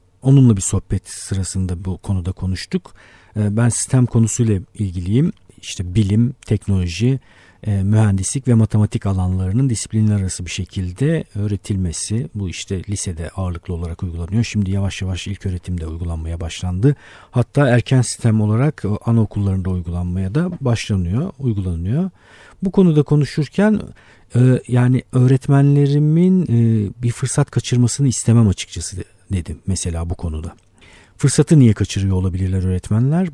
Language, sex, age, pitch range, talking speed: Turkish, male, 50-69, 95-125 Hz, 115 wpm